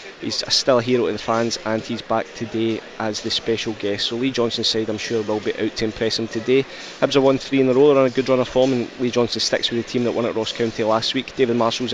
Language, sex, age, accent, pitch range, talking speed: English, male, 20-39, British, 115-125 Hz, 285 wpm